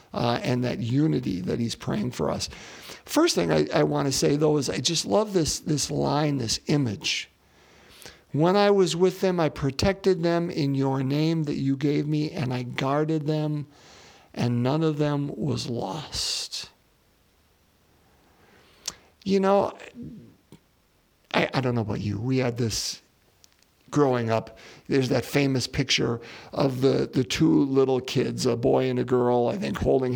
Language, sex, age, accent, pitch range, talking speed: English, male, 50-69, American, 125-155 Hz, 160 wpm